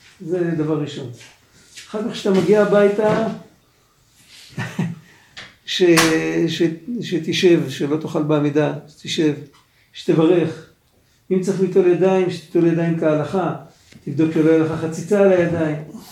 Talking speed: 105 wpm